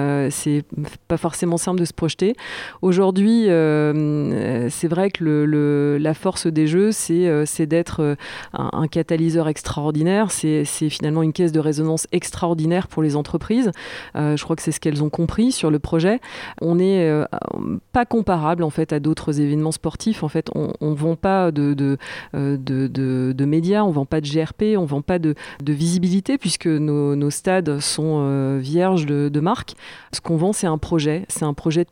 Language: French